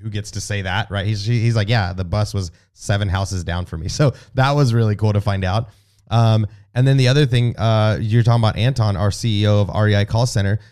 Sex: male